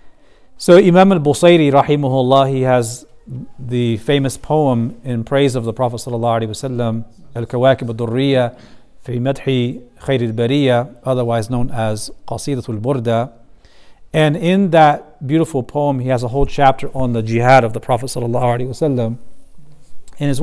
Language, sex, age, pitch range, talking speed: English, male, 40-59, 115-135 Hz, 120 wpm